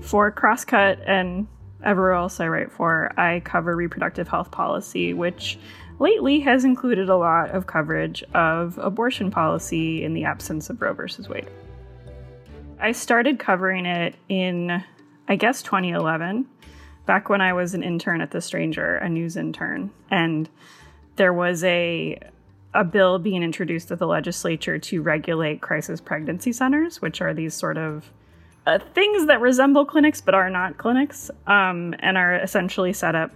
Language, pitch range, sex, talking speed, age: English, 160-195 Hz, female, 155 wpm, 20-39